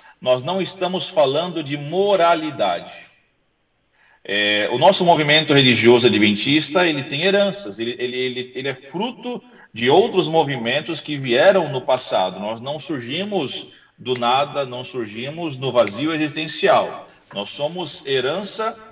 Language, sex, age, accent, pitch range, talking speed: Portuguese, male, 40-59, Brazilian, 135-180 Hz, 125 wpm